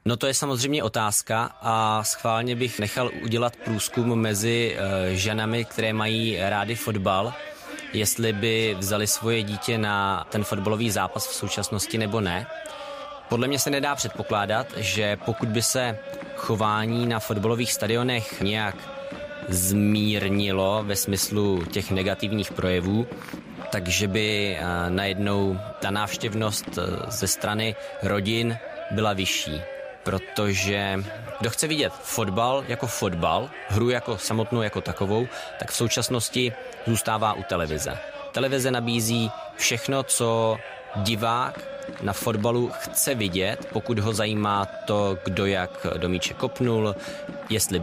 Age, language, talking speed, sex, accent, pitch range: 20-39, Czech, 120 wpm, male, native, 95-115 Hz